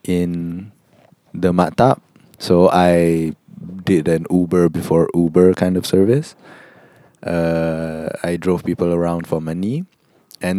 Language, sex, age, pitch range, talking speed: English, male, 20-39, 85-95 Hz, 120 wpm